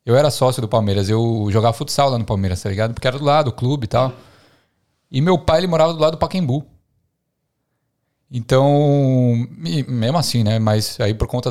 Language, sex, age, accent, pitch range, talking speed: Portuguese, male, 20-39, Brazilian, 115-155 Hz, 200 wpm